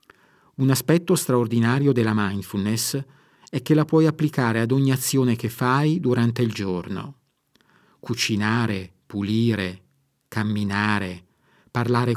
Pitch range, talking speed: 110-135 Hz, 110 wpm